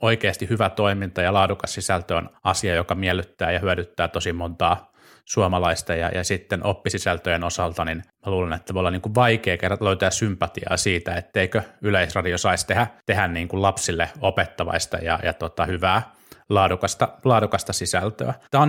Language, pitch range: Finnish, 90-110 Hz